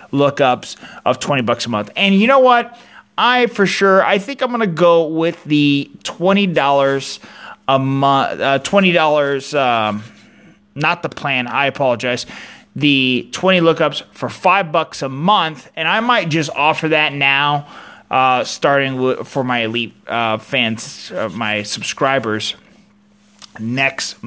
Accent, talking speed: American, 150 wpm